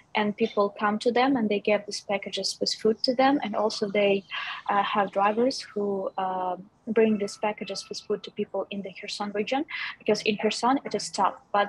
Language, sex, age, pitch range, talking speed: English, female, 20-39, 195-215 Hz, 205 wpm